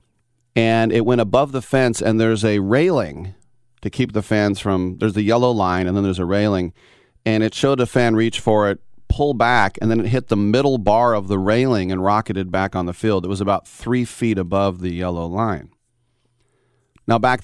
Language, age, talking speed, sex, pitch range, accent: English, 40-59, 210 wpm, male, 105-125 Hz, American